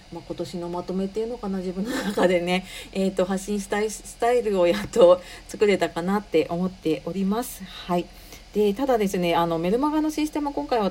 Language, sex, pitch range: Japanese, female, 175-230 Hz